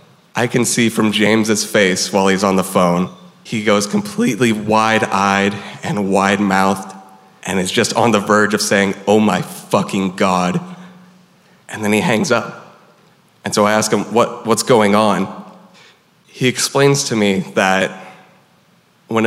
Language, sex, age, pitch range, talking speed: English, male, 20-39, 95-115 Hz, 155 wpm